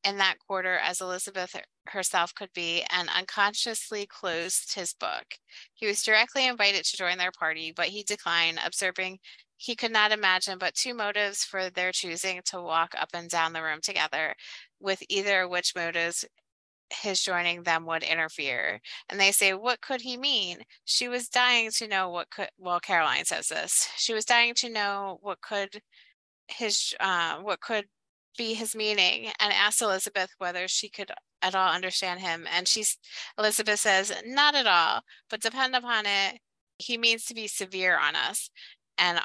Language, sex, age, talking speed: English, female, 20-39, 175 wpm